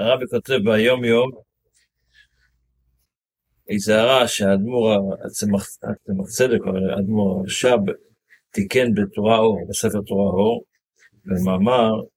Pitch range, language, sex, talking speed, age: 100-125 Hz, Hebrew, male, 95 wpm, 50-69